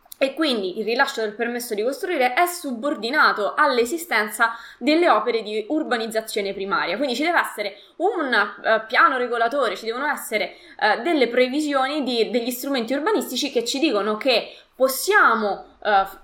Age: 20-39